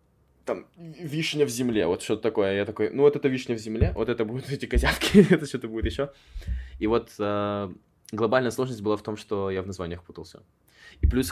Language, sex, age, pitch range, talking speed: Russian, male, 20-39, 90-120 Hz, 205 wpm